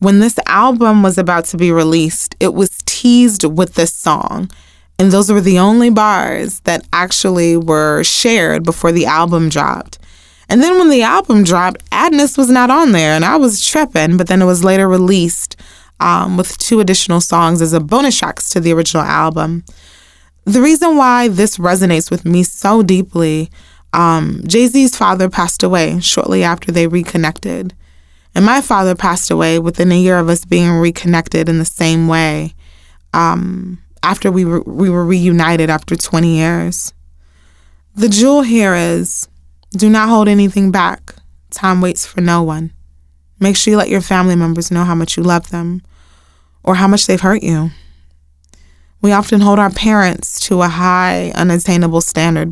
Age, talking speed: 20-39, 170 wpm